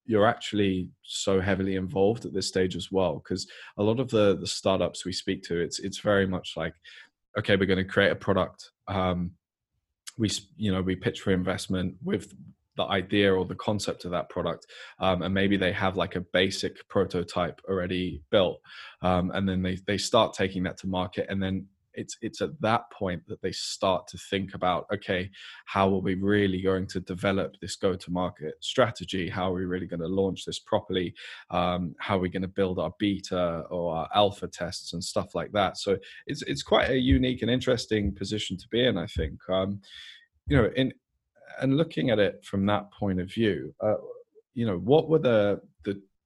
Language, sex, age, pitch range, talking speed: English, male, 20-39, 90-105 Hz, 200 wpm